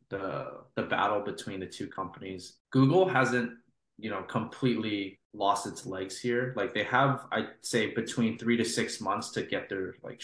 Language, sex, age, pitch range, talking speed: English, male, 20-39, 100-125 Hz, 175 wpm